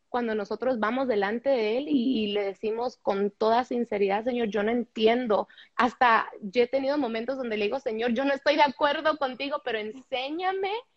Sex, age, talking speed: female, 20-39, 180 wpm